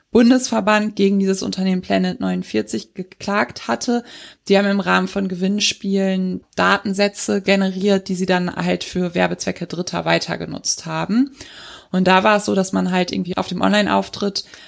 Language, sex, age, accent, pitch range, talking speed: German, female, 20-39, German, 175-200 Hz, 150 wpm